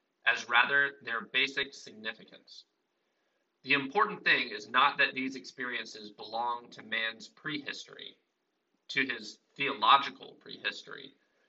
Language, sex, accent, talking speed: English, male, American, 110 wpm